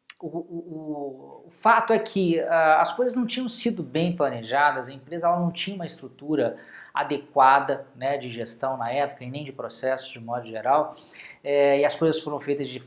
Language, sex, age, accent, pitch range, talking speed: Portuguese, male, 20-39, Brazilian, 140-195 Hz, 190 wpm